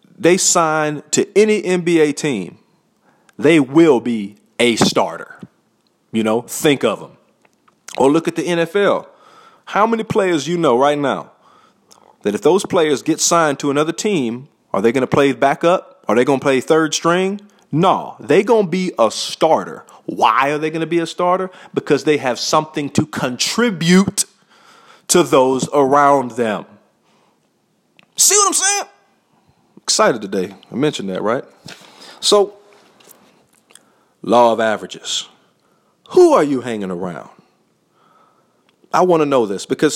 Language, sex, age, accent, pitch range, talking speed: English, male, 40-59, American, 125-195 Hz, 150 wpm